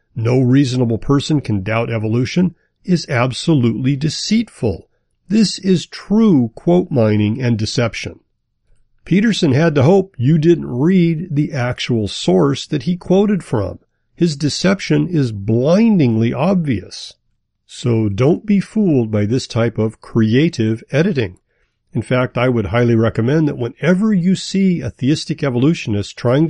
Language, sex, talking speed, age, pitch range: English, male, 135 wpm, 50-69, 115-160 Hz